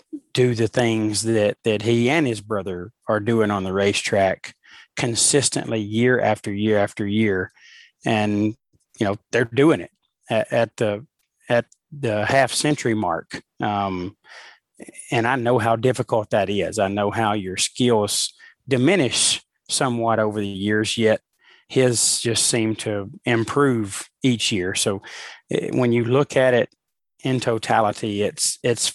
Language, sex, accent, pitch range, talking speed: English, male, American, 105-120 Hz, 145 wpm